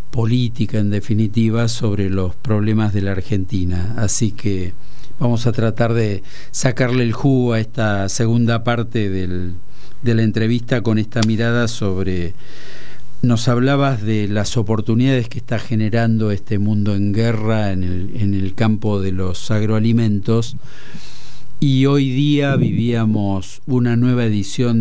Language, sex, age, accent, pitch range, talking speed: Spanish, male, 50-69, Argentinian, 105-125 Hz, 135 wpm